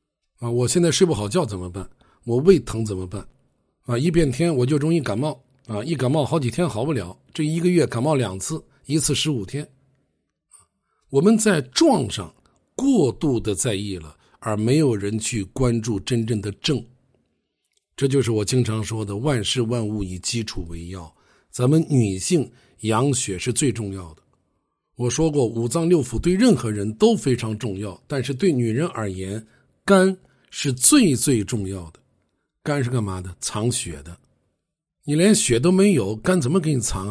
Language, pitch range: Chinese, 110-155 Hz